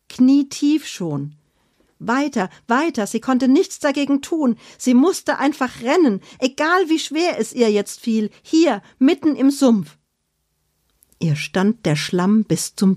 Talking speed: 145 wpm